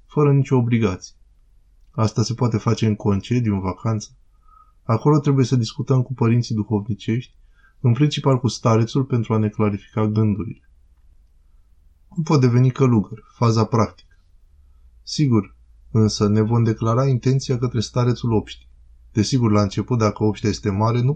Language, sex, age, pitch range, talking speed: Romanian, male, 20-39, 100-120 Hz, 140 wpm